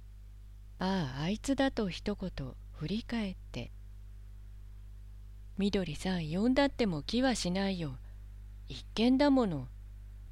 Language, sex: Japanese, female